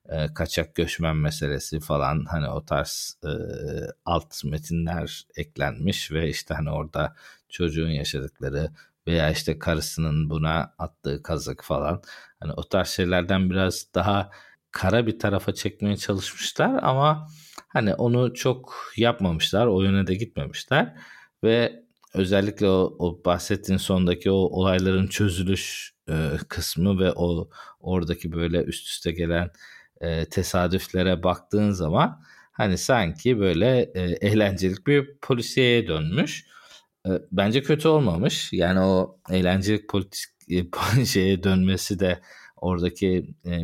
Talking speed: 120 wpm